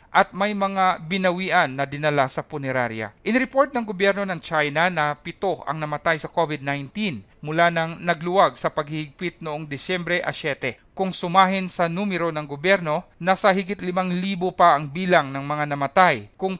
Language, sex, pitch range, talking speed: Filipino, male, 150-185 Hz, 165 wpm